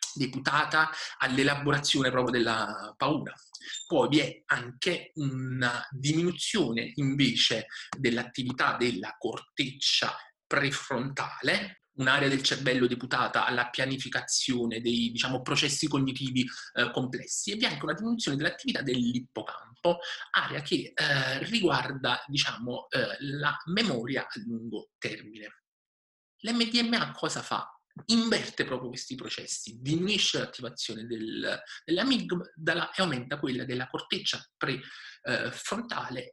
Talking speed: 105 wpm